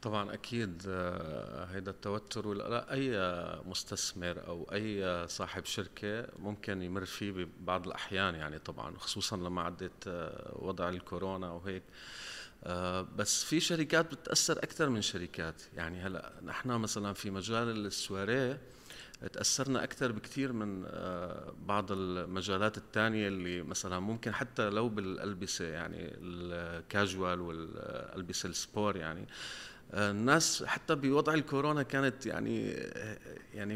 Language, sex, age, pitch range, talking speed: English, male, 40-59, 90-120 Hz, 115 wpm